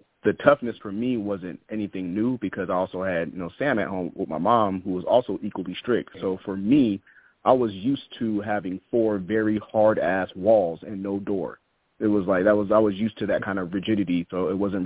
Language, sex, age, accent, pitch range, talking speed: English, male, 30-49, American, 95-110 Hz, 220 wpm